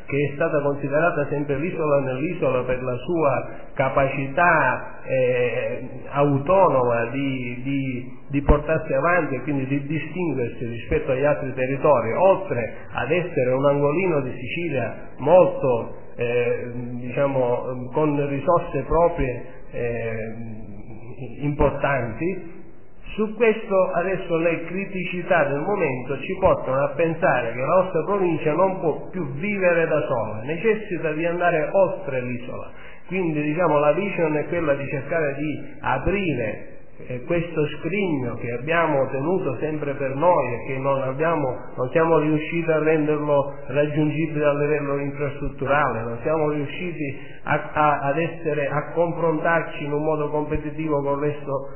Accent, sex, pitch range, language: native, male, 140-170 Hz, Italian